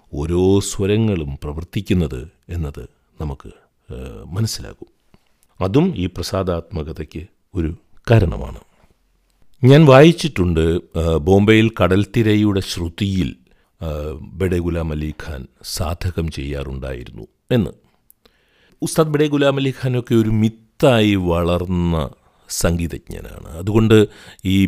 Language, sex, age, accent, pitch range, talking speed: Malayalam, male, 50-69, native, 80-105 Hz, 75 wpm